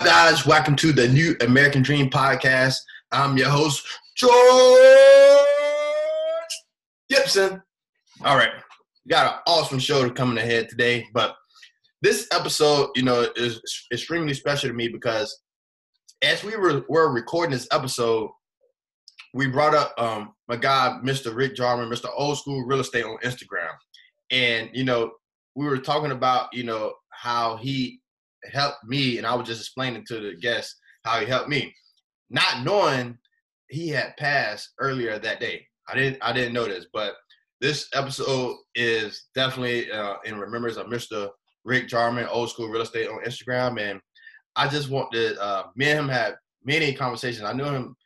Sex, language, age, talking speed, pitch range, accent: male, English, 20-39, 160 wpm, 120-160 Hz, American